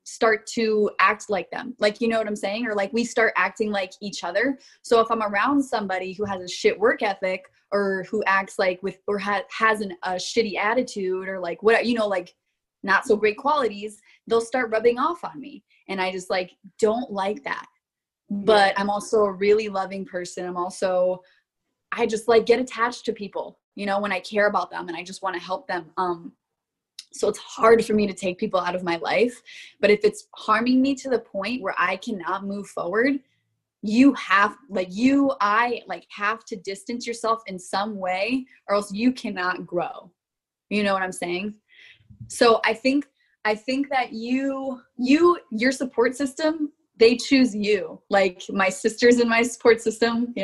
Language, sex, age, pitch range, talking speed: English, female, 20-39, 190-235 Hz, 195 wpm